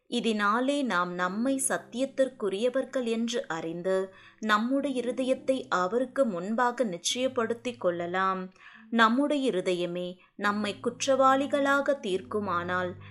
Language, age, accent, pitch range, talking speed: Tamil, 20-39, native, 180-255 Hz, 80 wpm